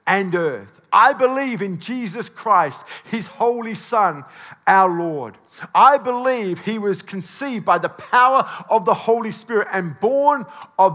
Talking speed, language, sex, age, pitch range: 150 wpm, English, male, 50-69, 205-280 Hz